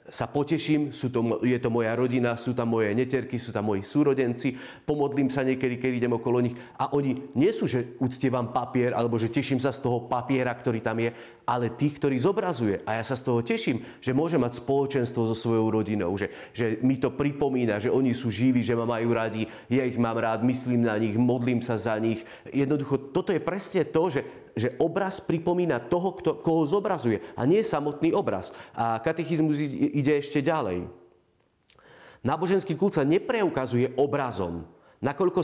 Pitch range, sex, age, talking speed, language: 120-165 Hz, male, 30-49, 185 wpm, Slovak